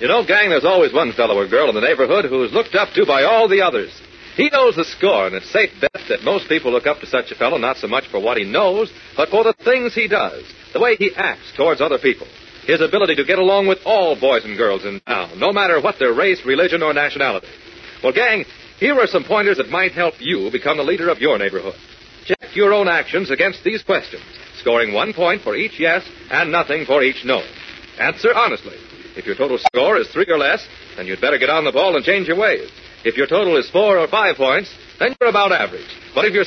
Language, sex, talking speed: English, male, 245 wpm